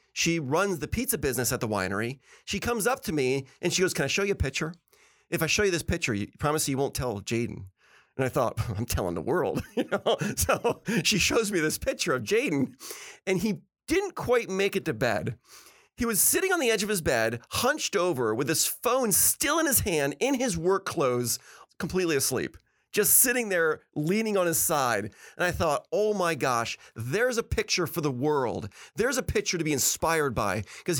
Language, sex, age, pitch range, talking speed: English, male, 40-59, 140-215 Hz, 210 wpm